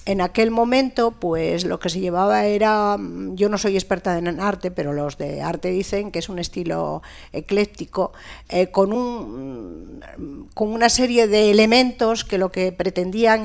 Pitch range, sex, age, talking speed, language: 175-230 Hz, female, 50-69, 165 wpm, Spanish